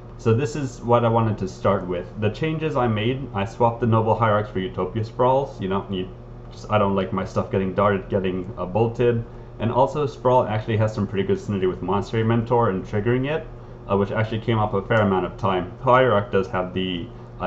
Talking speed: 225 wpm